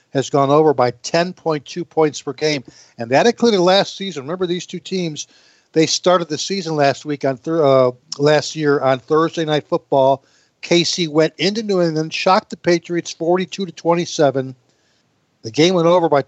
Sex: male